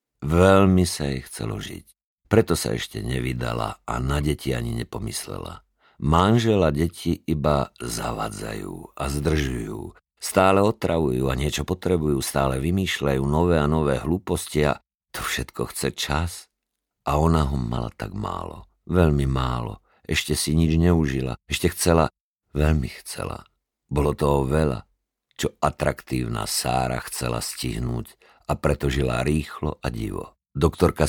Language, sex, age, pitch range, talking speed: Slovak, male, 50-69, 65-80 Hz, 130 wpm